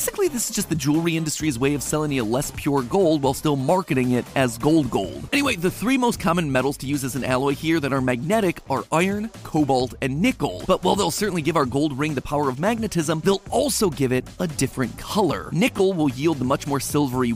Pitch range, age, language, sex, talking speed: 135-190 Hz, 30-49, English, male, 230 wpm